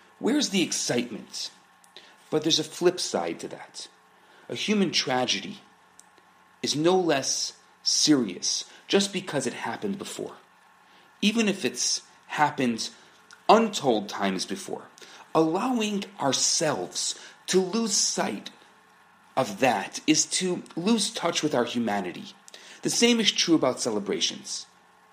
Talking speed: 115 wpm